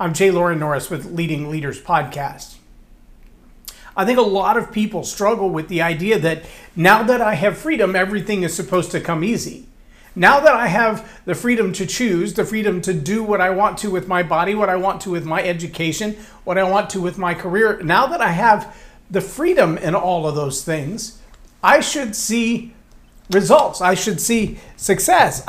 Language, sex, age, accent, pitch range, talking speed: English, male, 40-59, American, 180-225 Hz, 195 wpm